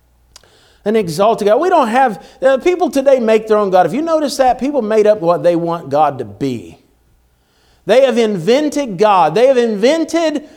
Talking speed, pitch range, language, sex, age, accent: 180 wpm, 180-270 Hz, English, male, 50-69, American